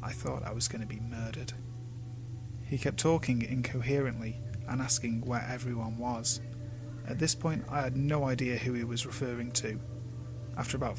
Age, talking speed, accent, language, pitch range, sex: 30-49, 170 wpm, British, English, 120-130 Hz, male